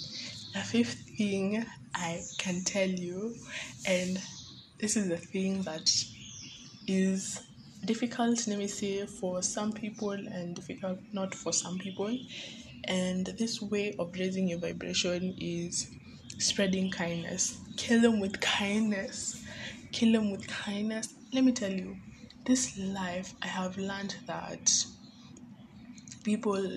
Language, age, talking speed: English, 20-39, 125 wpm